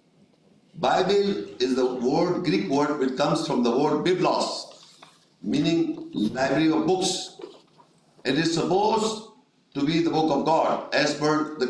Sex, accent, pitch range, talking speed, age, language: male, Indian, 140-185 Hz, 145 wpm, 60-79, English